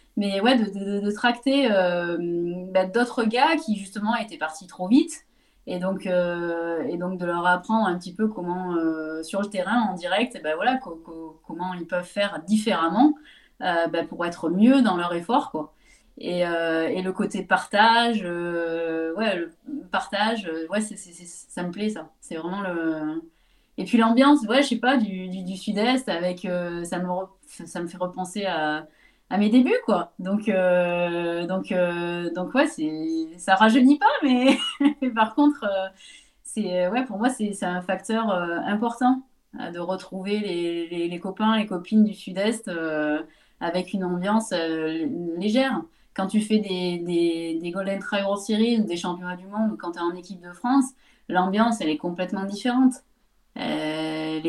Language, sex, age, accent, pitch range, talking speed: French, female, 20-39, French, 175-235 Hz, 185 wpm